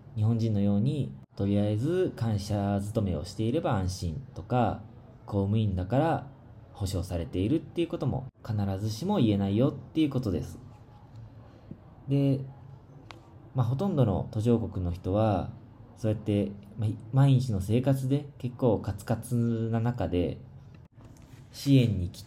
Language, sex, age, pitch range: Japanese, male, 20-39, 100-130 Hz